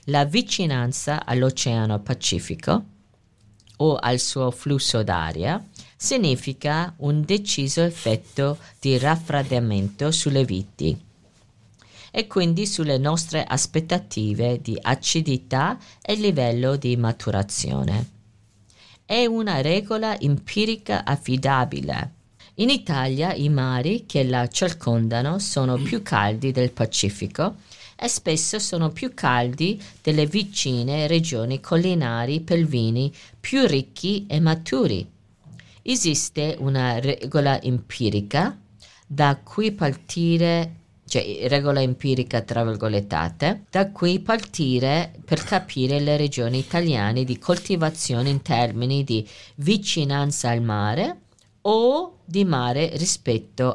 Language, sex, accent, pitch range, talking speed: English, female, Italian, 115-165 Hz, 100 wpm